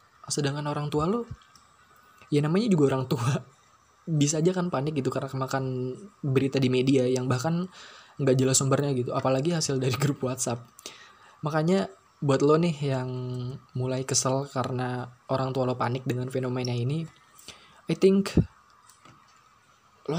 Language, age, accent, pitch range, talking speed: Indonesian, 20-39, native, 125-145 Hz, 145 wpm